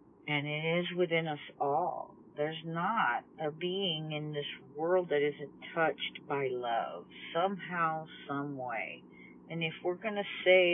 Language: English